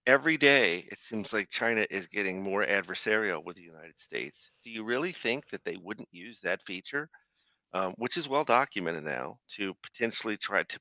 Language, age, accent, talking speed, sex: English, 50-69, American, 190 wpm, male